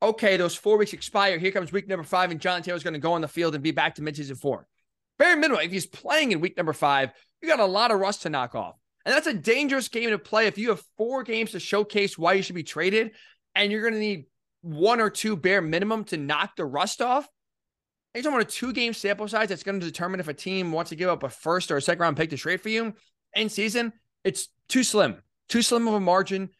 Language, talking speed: English, 260 wpm